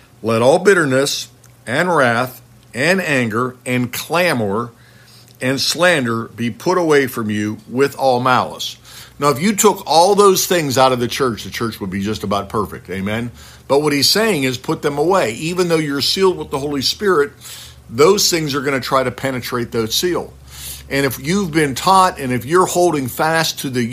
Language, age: English, 60-79